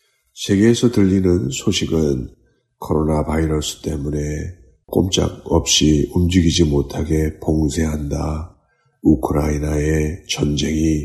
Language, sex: Korean, male